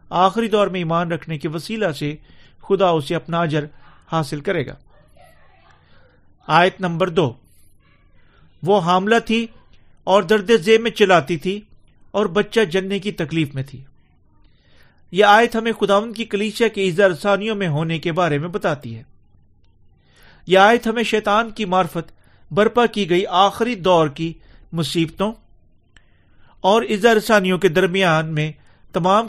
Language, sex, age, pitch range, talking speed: Urdu, male, 40-59, 150-205 Hz, 140 wpm